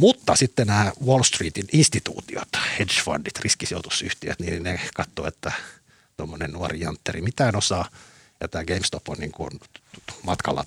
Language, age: Finnish, 50-69